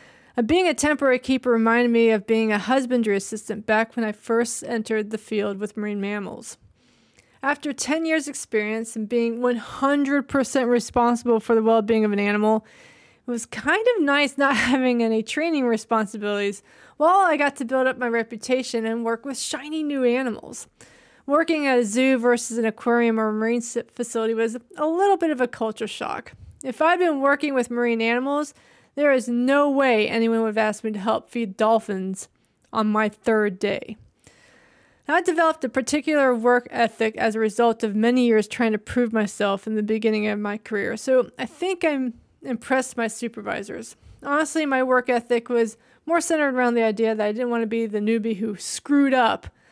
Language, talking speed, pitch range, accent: English, 180 wpm, 220-265 Hz, American